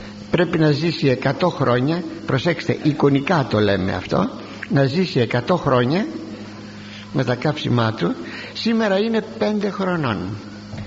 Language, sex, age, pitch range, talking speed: Greek, male, 60-79, 105-175 Hz, 120 wpm